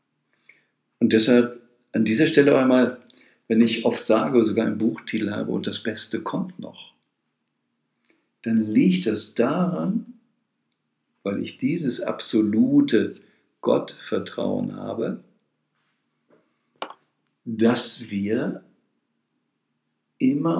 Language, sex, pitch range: German, male, 100-130 Hz